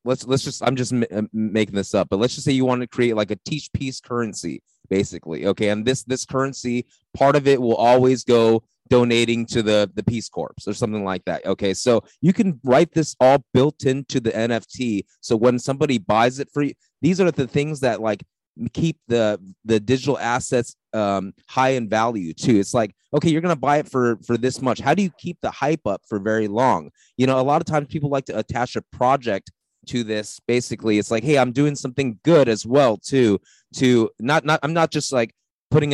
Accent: American